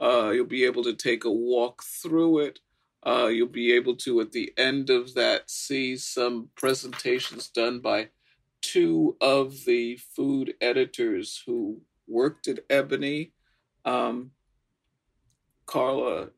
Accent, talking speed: American, 130 wpm